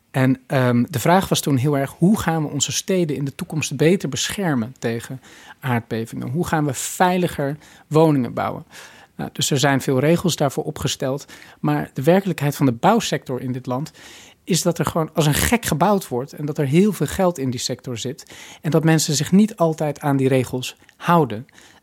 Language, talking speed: Dutch, 190 wpm